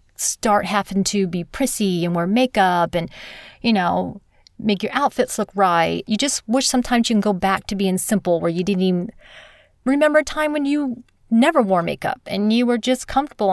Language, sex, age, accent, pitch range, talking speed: English, female, 30-49, American, 180-220 Hz, 195 wpm